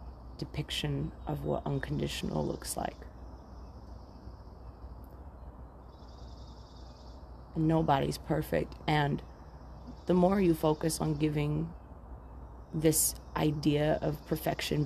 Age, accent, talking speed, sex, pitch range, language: 30-49, American, 80 wpm, female, 65-90 Hz, English